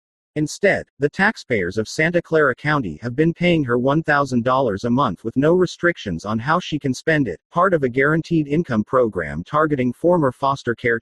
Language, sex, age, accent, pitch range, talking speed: English, male, 40-59, American, 120-155 Hz, 180 wpm